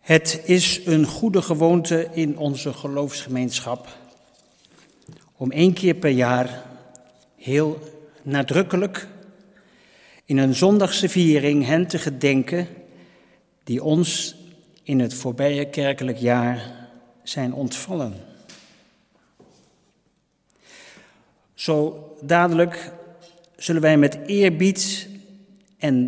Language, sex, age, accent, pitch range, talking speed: Dutch, male, 50-69, Dutch, 130-170 Hz, 85 wpm